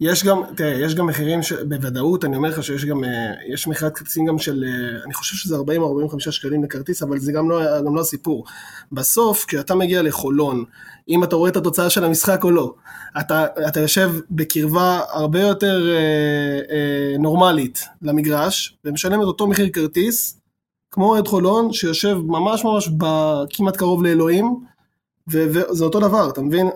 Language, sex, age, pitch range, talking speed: Hebrew, male, 20-39, 145-180 Hz, 170 wpm